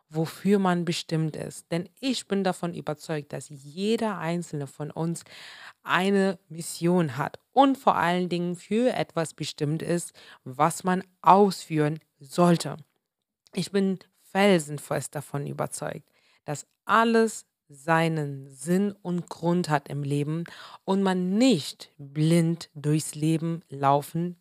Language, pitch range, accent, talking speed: German, 155-200 Hz, German, 125 wpm